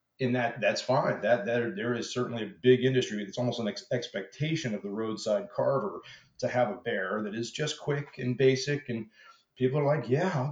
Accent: American